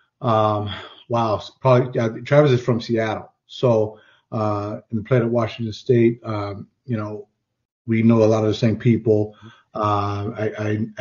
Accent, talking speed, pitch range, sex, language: American, 145 wpm, 105-120 Hz, male, English